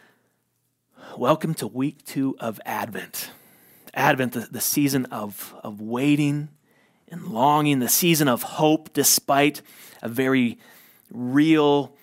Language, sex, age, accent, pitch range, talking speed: English, male, 30-49, American, 125-160 Hz, 115 wpm